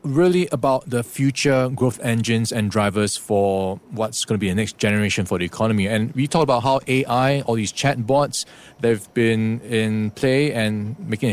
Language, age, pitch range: English, 20-39, 105-135 Hz